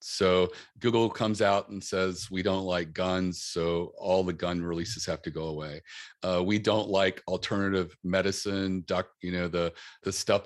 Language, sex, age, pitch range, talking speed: English, male, 40-59, 90-100 Hz, 180 wpm